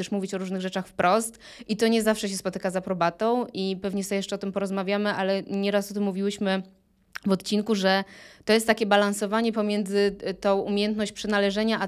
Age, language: 20-39, Polish